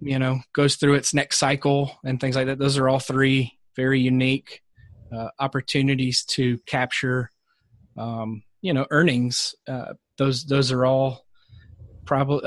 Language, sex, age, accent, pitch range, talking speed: English, male, 30-49, American, 120-135 Hz, 150 wpm